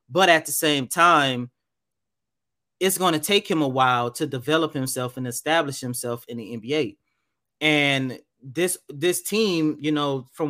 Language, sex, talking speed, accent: English, male, 160 wpm, American